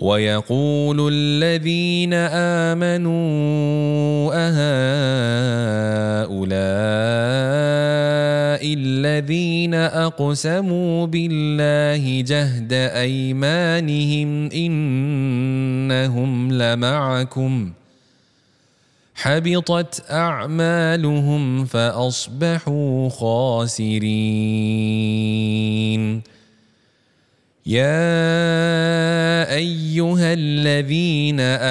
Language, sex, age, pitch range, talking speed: Malay, male, 30-49, 130-155 Hz, 30 wpm